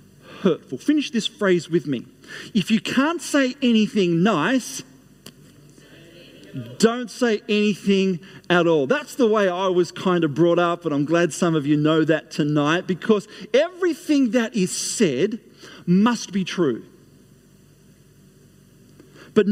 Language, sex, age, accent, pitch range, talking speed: English, male, 40-59, Australian, 155-230 Hz, 135 wpm